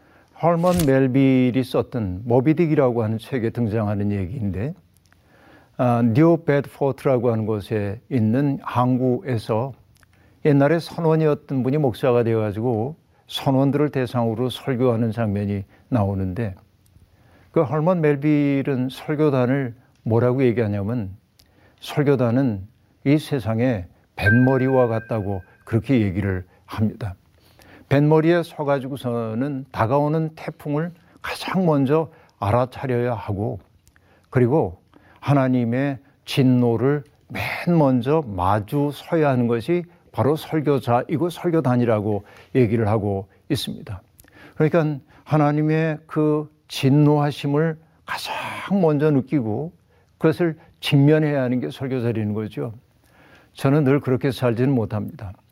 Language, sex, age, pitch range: Korean, male, 50-69, 110-145 Hz